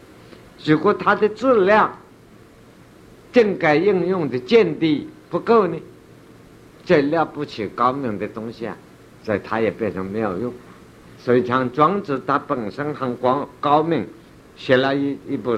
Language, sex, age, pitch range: Chinese, male, 60-79, 120-160 Hz